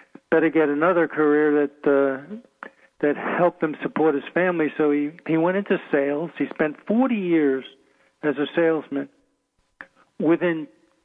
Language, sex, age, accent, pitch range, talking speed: English, male, 50-69, American, 145-165 Hz, 140 wpm